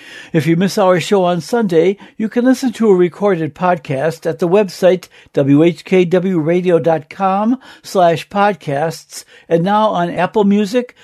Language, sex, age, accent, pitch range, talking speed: English, male, 60-79, American, 165-220 Hz, 135 wpm